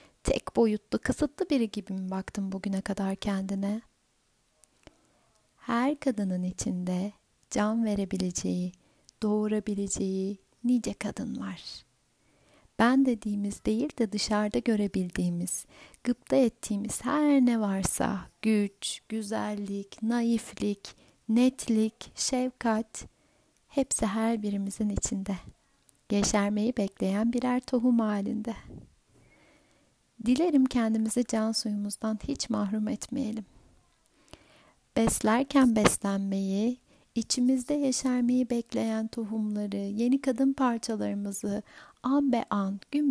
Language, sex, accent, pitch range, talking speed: Turkish, female, native, 200-240 Hz, 90 wpm